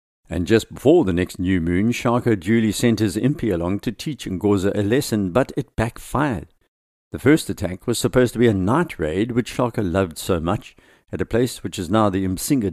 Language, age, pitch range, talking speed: English, 60-79, 90-115 Hz, 210 wpm